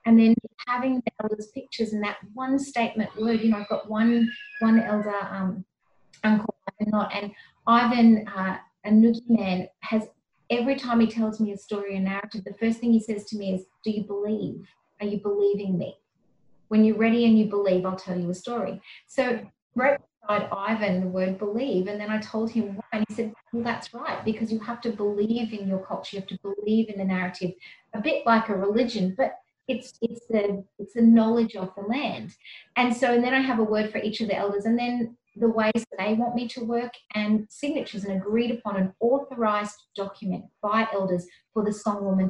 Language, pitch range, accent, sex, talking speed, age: English, 195-230 Hz, Australian, female, 210 wpm, 30-49